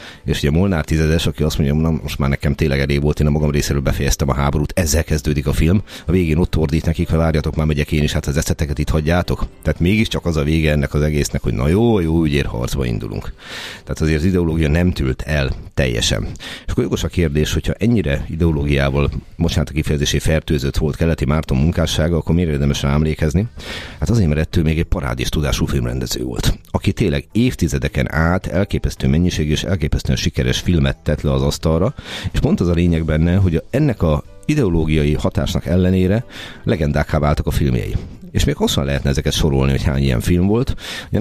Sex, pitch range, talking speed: male, 70-85 Hz, 190 wpm